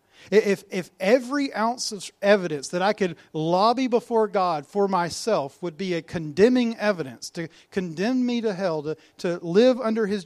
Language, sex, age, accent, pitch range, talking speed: English, male, 40-59, American, 145-215 Hz, 170 wpm